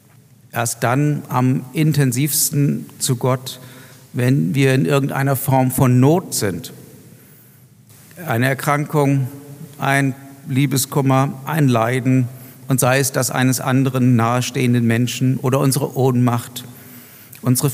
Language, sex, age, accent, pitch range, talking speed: German, male, 50-69, German, 115-135 Hz, 110 wpm